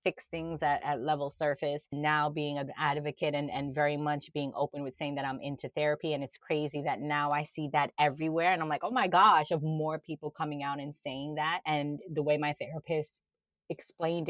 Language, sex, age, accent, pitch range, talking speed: English, female, 30-49, American, 145-185 Hz, 215 wpm